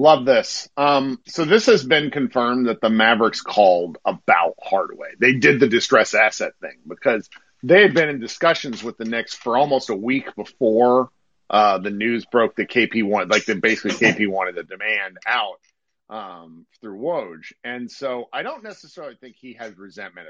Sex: male